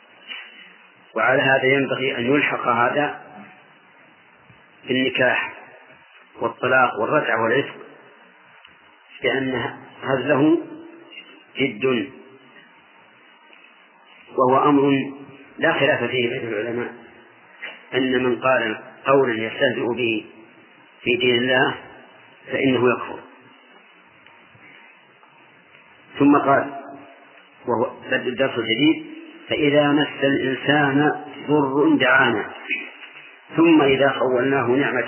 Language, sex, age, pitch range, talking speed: English, male, 40-59, 130-145 Hz, 80 wpm